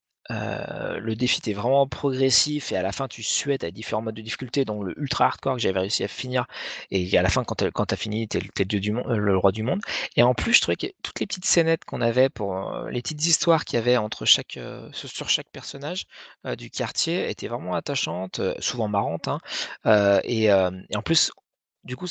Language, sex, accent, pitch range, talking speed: French, male, French, 100-130 Hz, 240 wpm